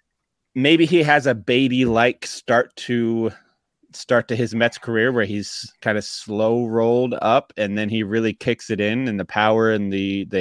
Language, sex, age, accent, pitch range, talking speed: English, male, 30-49, American, 100-125 Hz, 185 wpm